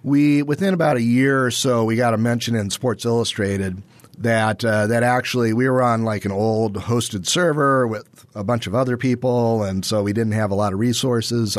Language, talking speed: English, 210 wpm